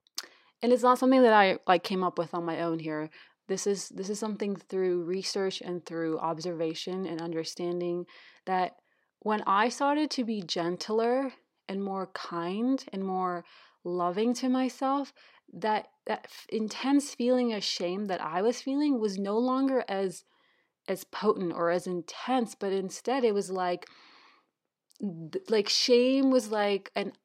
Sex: female